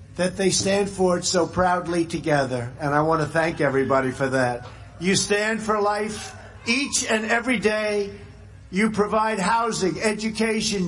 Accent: American